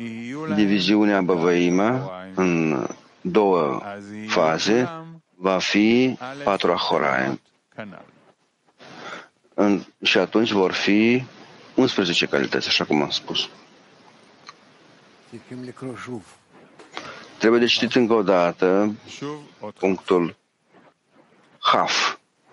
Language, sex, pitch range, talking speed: English, male, 90-120 Hz, 70 wpm